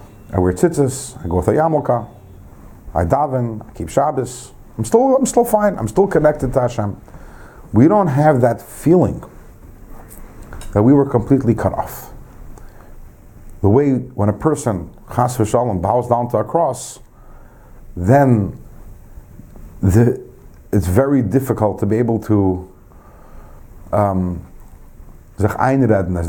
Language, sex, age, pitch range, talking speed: English, male, 50-69, 100-125 Hz, 130 wpm